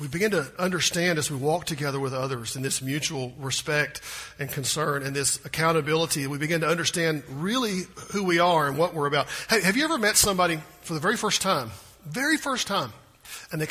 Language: English